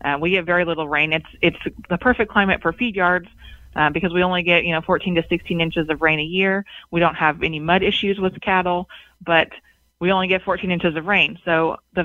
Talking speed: 240 wpm